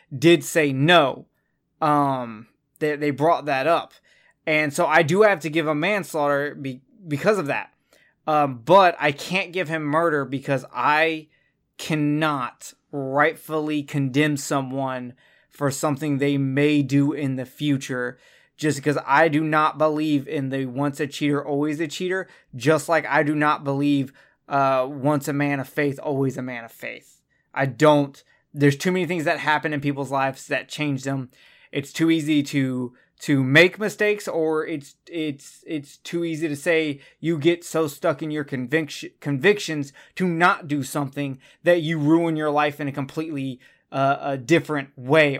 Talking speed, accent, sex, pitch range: 165 wpm, American, male, 140-160 Hz